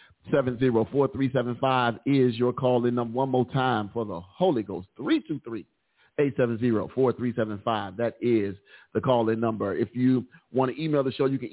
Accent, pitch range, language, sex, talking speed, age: American, 120-135 Hz, English, male, 165 wpm, 40-59